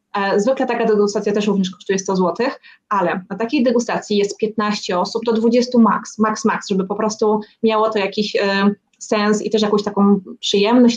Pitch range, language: 200-230 Hz, Polish